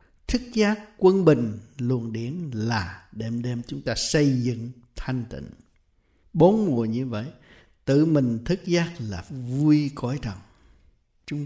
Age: 60-79